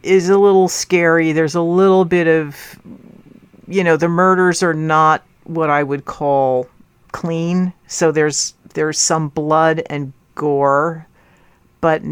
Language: English